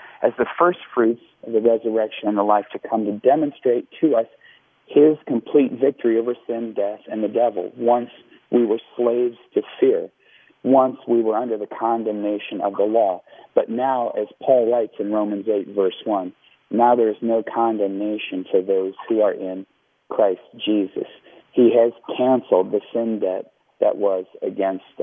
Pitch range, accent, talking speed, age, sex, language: 105-135 Hz, American, 170 wpm, 50-69, male, English